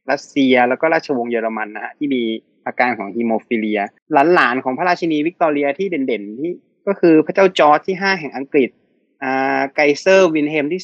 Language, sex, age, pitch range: Thai, male, 20-39, 125-160 Hz